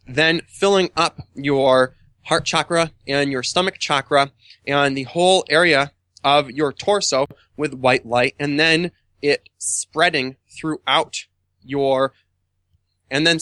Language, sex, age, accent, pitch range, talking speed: English, male, 20-39, American, 130-160 Hz, 125 wpm